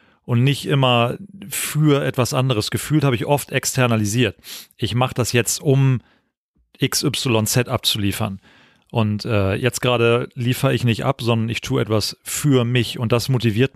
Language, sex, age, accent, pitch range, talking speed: German, male, 40-59, German, 110-125 Hz, 155 wpm